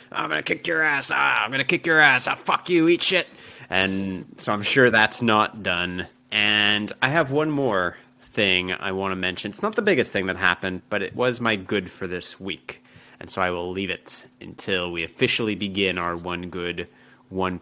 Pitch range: 95-125 Hz